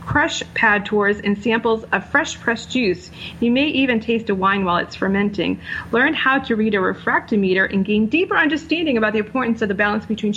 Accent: American